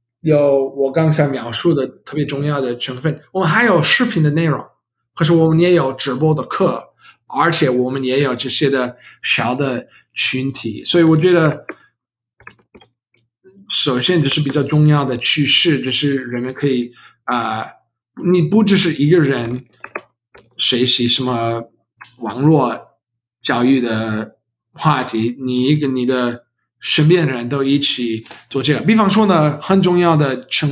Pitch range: 125-165 Hz